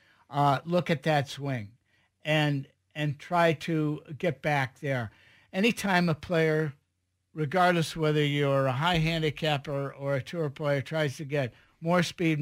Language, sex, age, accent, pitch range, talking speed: English, male, 60-79, American, 145-170 Hz, 150 wpm